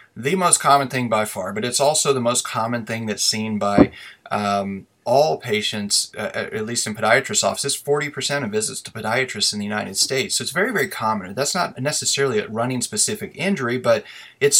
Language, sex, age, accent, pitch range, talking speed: English, male, 30-49, American, 105-130 Hz, 200 wpm